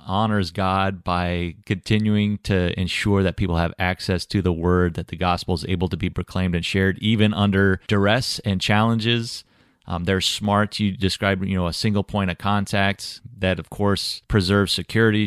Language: English